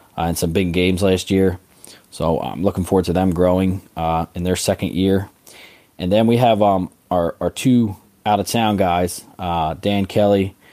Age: 20-39